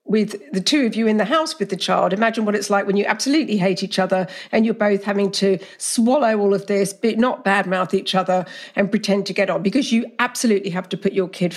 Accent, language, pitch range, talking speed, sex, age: British, English, 195-260 Hz, 255 wpm, female, 50-69